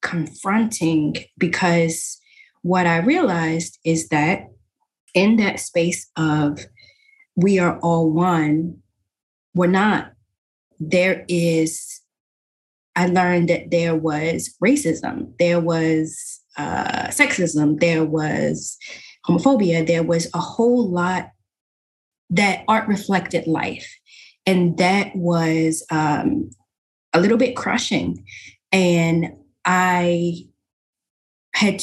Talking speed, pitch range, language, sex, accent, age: 100 wpm, 160-190 Hz, English, female, American, 20-39